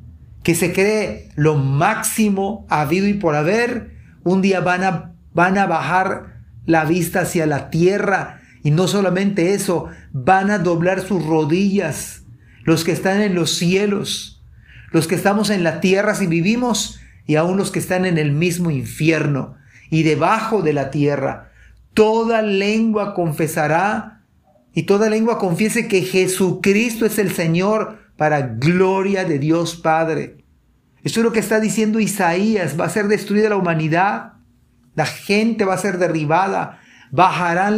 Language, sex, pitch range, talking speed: Spanish, male, 155-195 Hz, 150 wpm